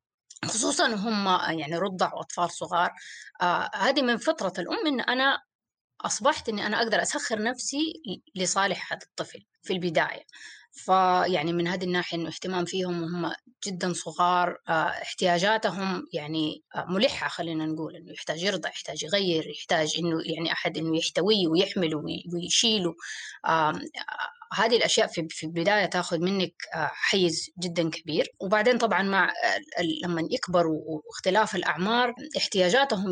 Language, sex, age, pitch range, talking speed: Arabic, female, 20-39, 170-215 Hz, 130 wpm